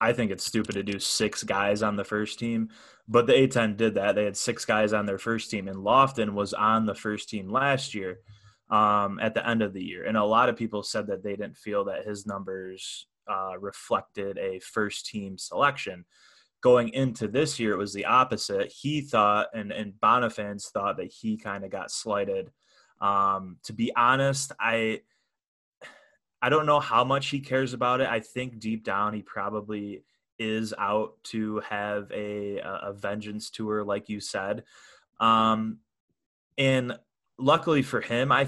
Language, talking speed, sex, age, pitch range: English, 180 wpm, male, 20-39, 100-120 Hz